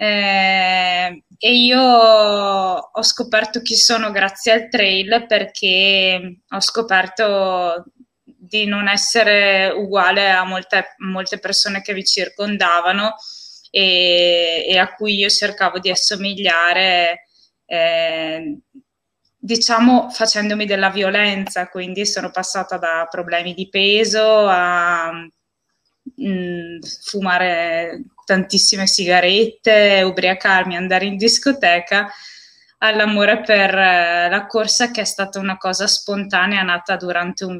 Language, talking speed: Italian, 105 wpm